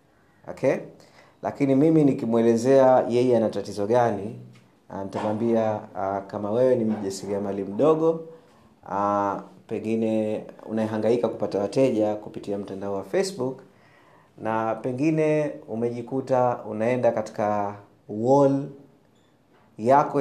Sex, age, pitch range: male, 30-49, 110-140 Hz